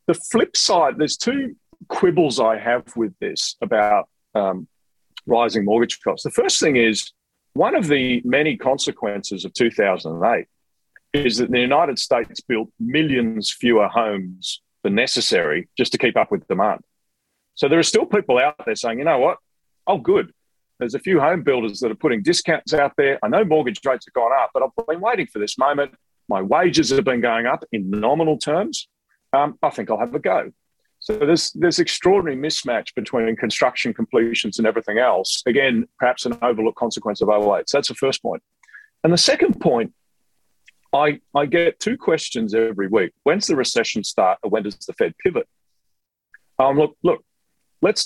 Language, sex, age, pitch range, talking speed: English, male, 40-59, 115-165 Hz, 180 wpm